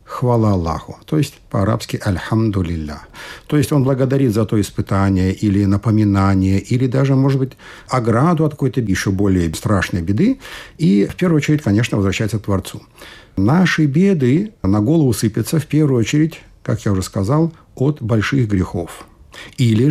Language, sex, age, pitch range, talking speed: Russian, male, 60-79, 100-145 Hz, 150 wpm